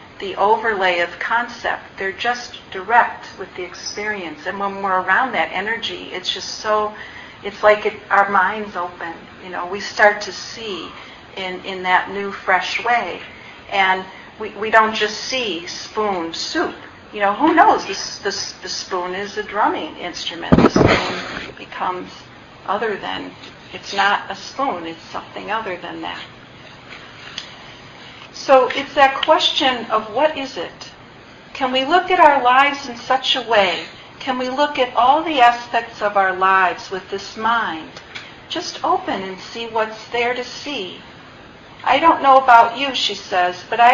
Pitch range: 195-250 Hz